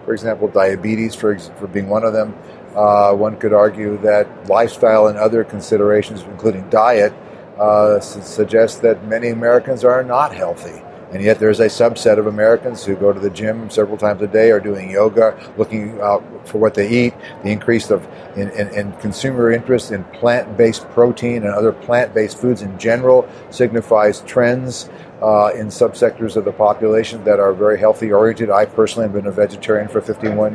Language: English